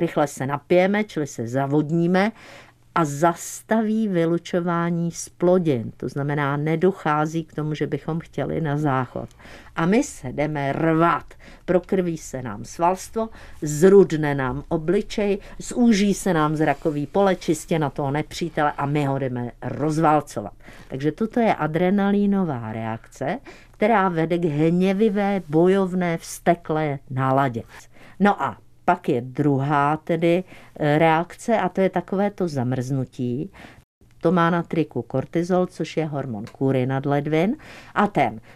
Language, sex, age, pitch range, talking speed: Czech, female, 50-69, 145-185 Hz, 130 wpm